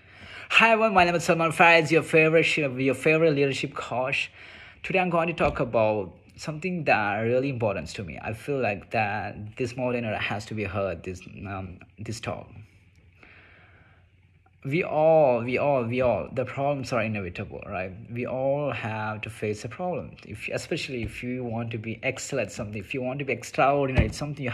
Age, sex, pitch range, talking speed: 30-49, male, 100-135 Hz, 190 wpm